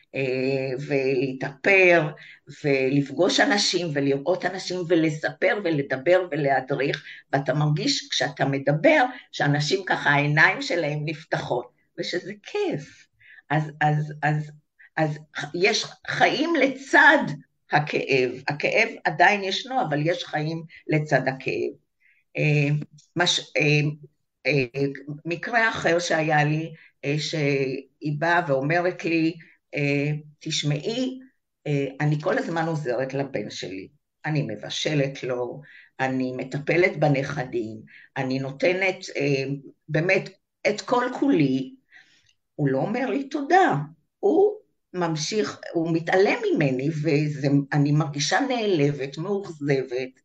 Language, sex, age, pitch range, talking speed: Hebrew, female, 50-69, 140-175 Hz, 105 wpm